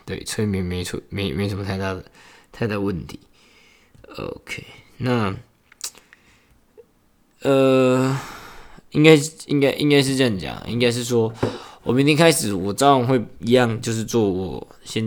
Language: Chinese